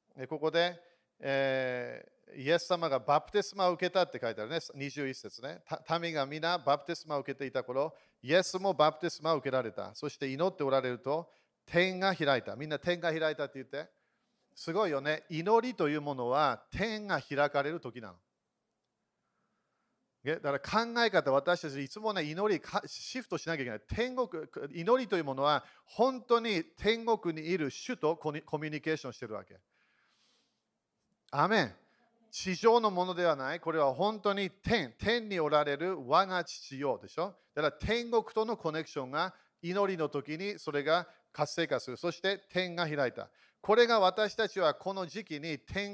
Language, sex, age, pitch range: Japanese, male, 40-59, 145-195 Hz